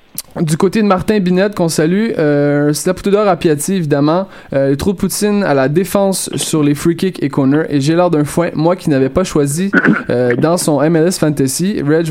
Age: 20-39